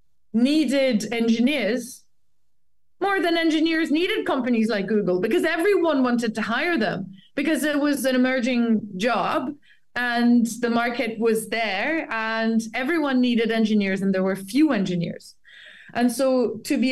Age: 20-39